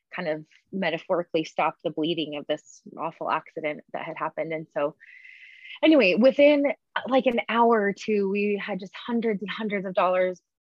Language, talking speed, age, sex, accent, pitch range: English, 170 wpm, 20-39, female, American, 180-215 Hz